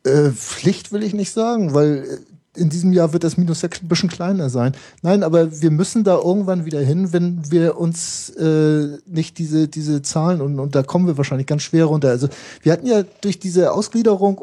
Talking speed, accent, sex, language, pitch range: 210 wpm, German, male, German, 145-175 Hz